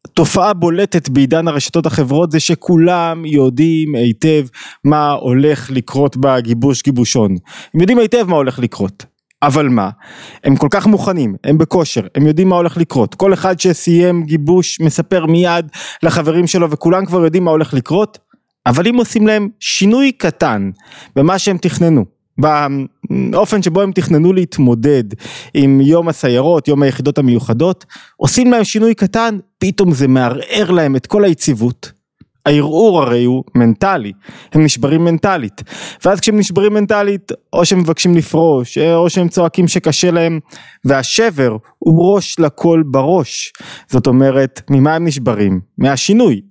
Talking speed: 140 wpm